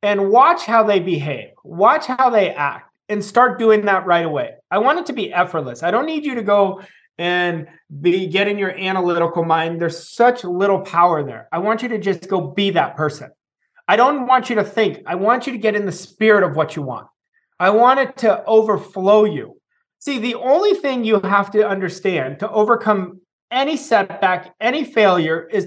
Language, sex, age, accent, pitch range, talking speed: English, male, 30-49, American, 185-245 Hz, 200 wpm